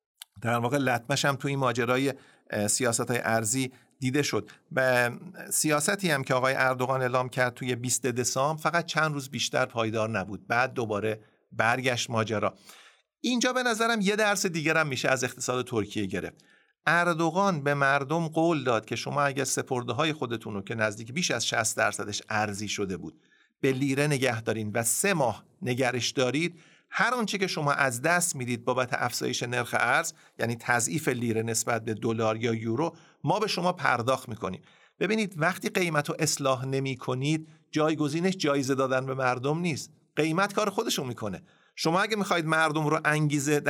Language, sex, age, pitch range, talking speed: Persian, male, 50-69, 120-165 Hz, 165 wpm